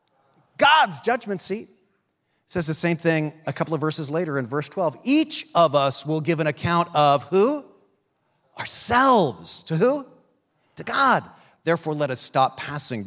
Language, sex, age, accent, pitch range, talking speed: English, male, 40-59, American, 115-165 Hz, 160 wpm